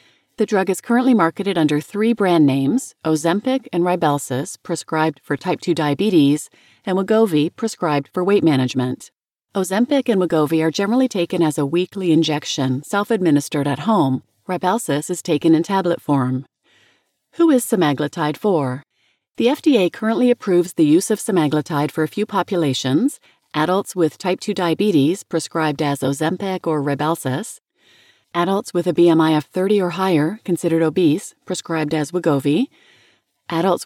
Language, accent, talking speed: English, American, 145 wpm